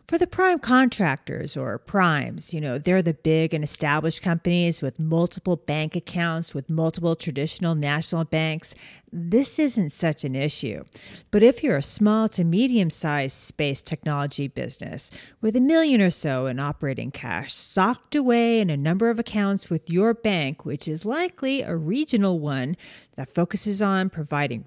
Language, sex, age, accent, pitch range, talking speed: English, female, 40-59, American, 160-235 Hz, 160 wpm